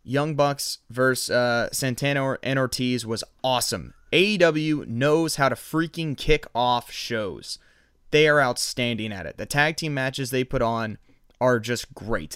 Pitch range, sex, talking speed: 115-145 Hz, male, 155 wpm